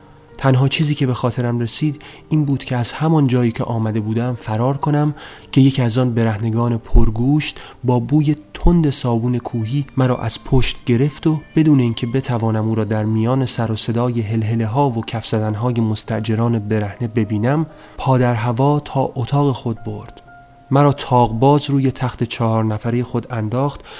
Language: English